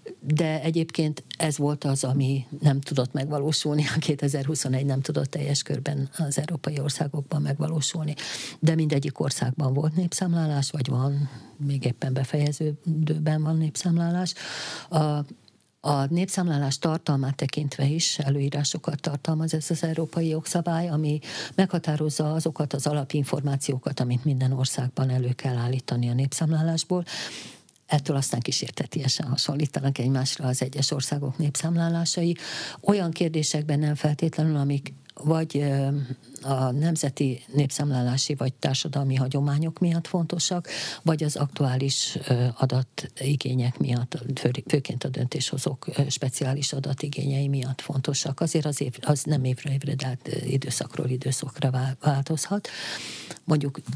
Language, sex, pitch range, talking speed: Hungarian, female, 135-155 Hz, 115 wpm